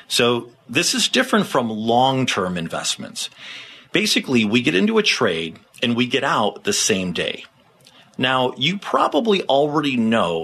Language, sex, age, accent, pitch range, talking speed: English, male, 40-59, American, 105-145 Hz, 145 wpm